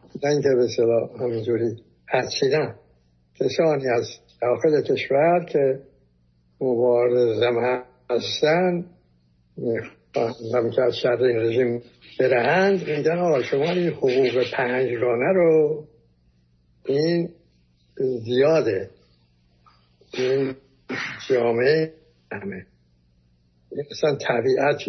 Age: 60-79